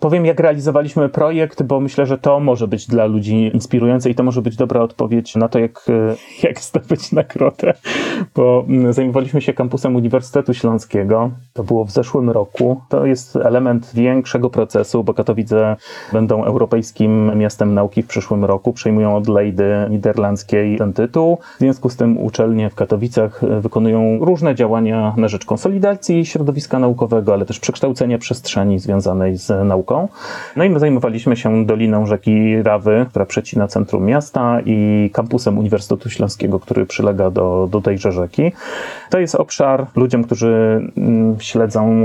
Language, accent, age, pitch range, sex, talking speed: Polish, native, 30-49, 105-125 Hz, male, 150 wpm